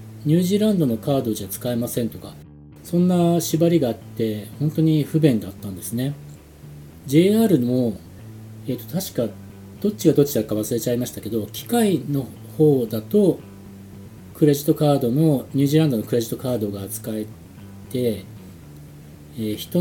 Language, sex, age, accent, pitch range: Japanese, male, 40-59, native, 110-150 Hz